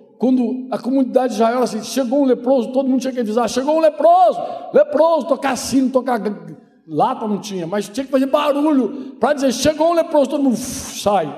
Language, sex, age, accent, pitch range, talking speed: Portuguese, male, 60-79, Brazilian, 175-265 Hz, 210 wpm